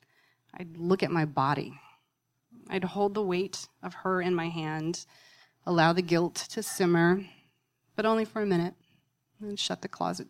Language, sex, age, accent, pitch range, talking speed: English, female, 30-49, American, 155-215 Hz, 165 wpm